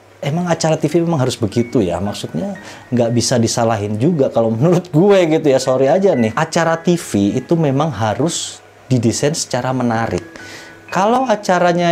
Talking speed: 150 wpm